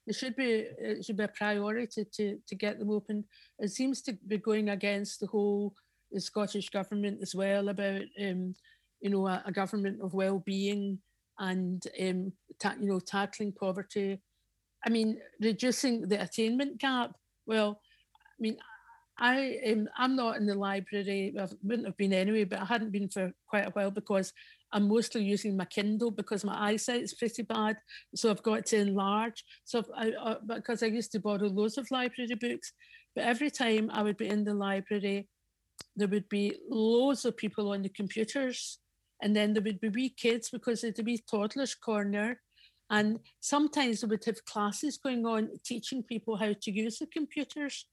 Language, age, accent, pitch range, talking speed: English, 60-79, British, 205-235 Hz, 180 wpm